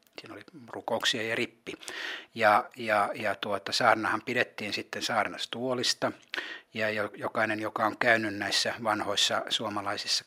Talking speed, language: 125 wpm, Finnish